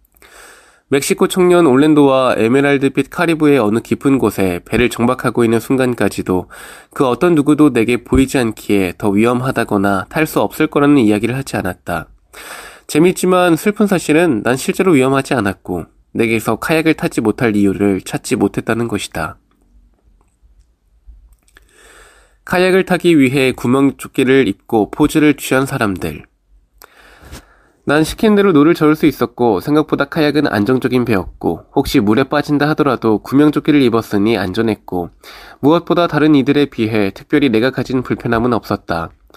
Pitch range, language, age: 105-150 Hz, Korean, 20-39